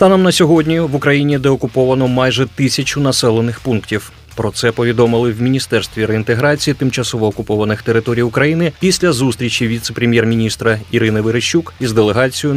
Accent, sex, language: native, male, Ukrainian